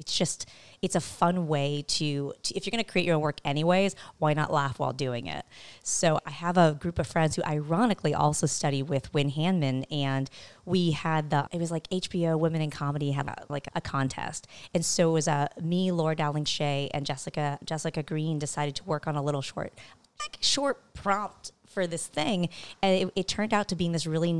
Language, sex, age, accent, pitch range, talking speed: English, female, 30-49, American, 150-175 Hz, 215 wpm